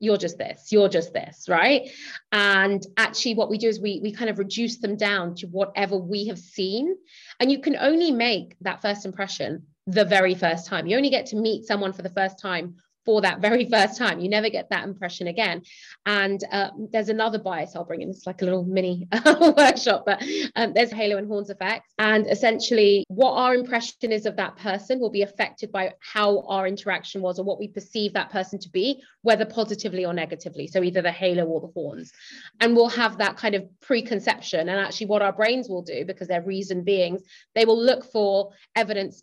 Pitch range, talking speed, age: 190-230 Hz, 210 wpm, 20-39